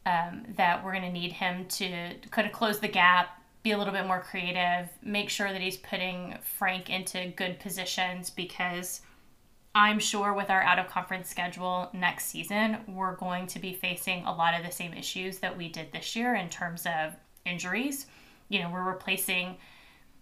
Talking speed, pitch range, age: 180 wpm, 185-220 Hz, 20-39